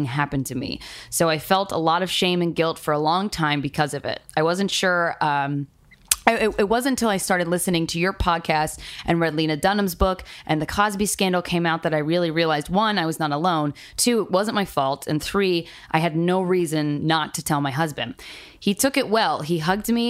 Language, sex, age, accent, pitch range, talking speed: English, female, 20-39, American, 150-190 Hz, 225 wpm